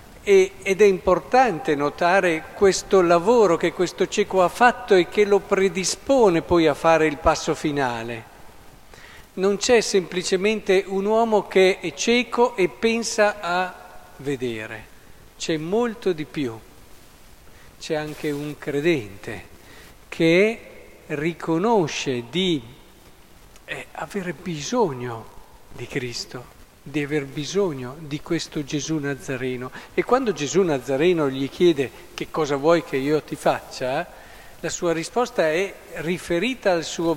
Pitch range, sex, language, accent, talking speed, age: 135-190 Hz, male, Italian, native, 120 wpm, 50-69